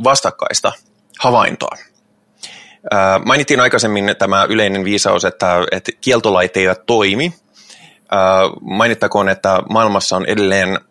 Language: Finnish